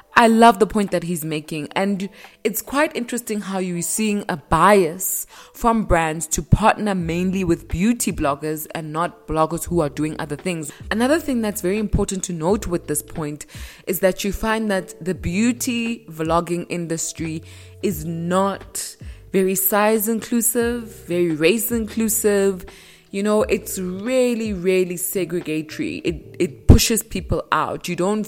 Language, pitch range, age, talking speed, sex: English, 165-210 Hz, 20-39, 155 wpm, female